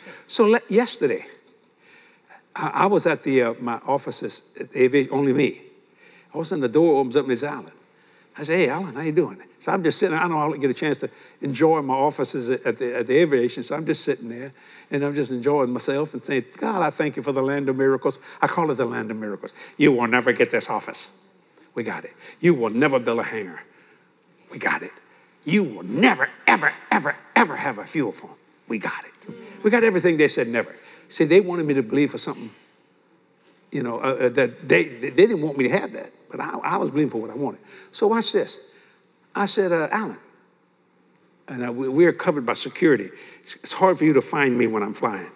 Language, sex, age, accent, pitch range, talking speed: English, male, 60-79, American, 130-185 Hz, 220 wpm